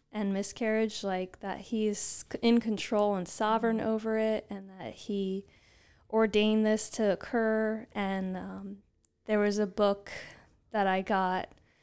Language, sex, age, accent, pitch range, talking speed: English, female, 20-39, American, 200-220 Hz, 135 wpm